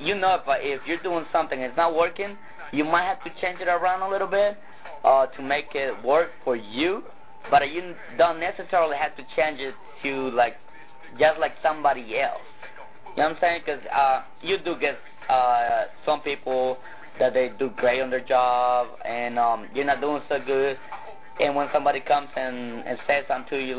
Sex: male